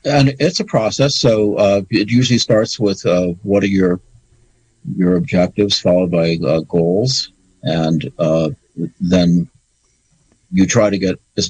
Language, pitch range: English, 85-115 Hz